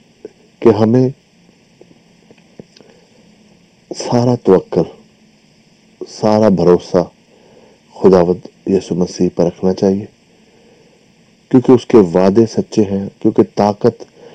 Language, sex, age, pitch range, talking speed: English, male, 50-69, 100-125 Hz, 80 wpm